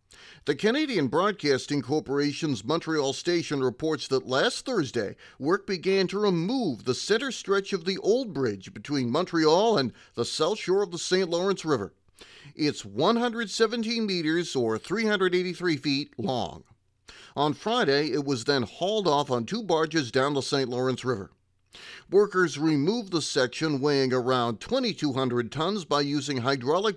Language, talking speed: English, 145 wpm